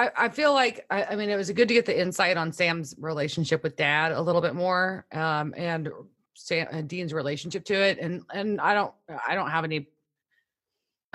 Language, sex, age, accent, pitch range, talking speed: English, female, 30-49, American, 145-205 Hz, 200 wpm